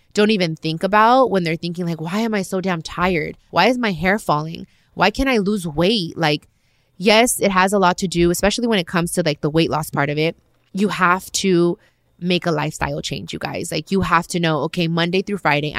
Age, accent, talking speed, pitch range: 20-39, American, 235 wpm, 155-195 Hz